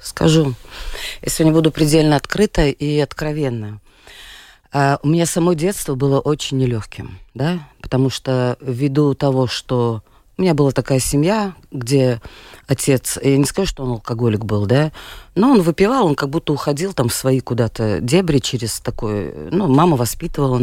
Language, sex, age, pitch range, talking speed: Russian, female, 30-49, 125-160 Hz, 155 wpm